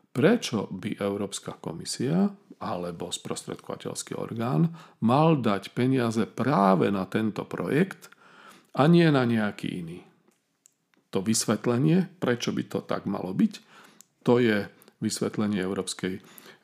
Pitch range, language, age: 95-120 Hz, Slovak, 40-59